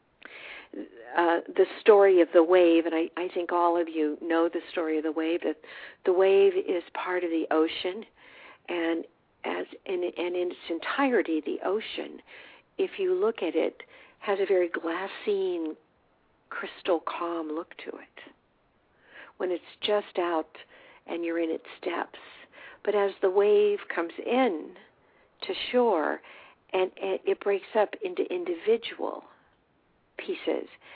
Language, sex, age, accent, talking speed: English, female, 50-69, American, 145 wpm